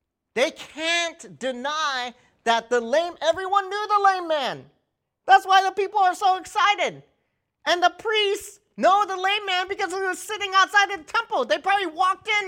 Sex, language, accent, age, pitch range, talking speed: male, English, American, 40-59, 275-370 Hz, 180 wpm